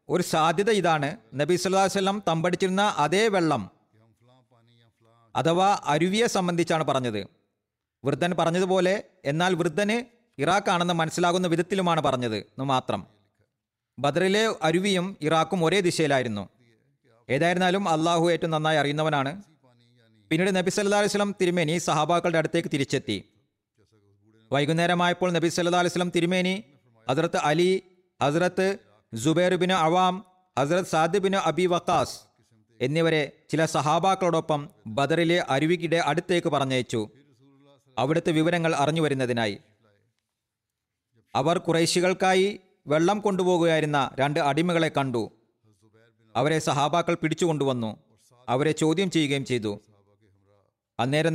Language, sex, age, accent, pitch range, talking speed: Malayalam, male, 40-59, native, 120-180 Hz, 90 wpm